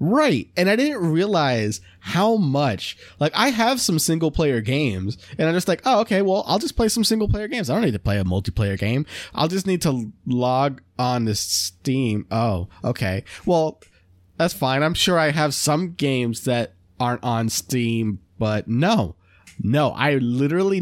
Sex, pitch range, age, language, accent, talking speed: male, 105-150 Hz, 20-39, English, American, 185 wpm